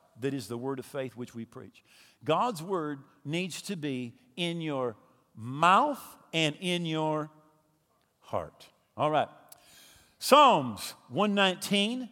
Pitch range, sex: 160-245 Hz, male